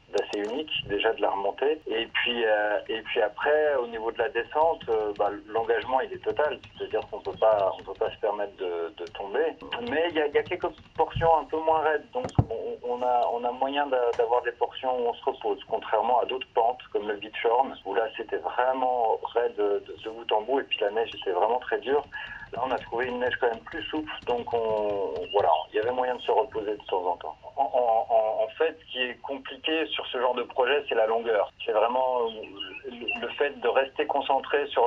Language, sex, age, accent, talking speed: English, male, 40-59, French, 235 wpm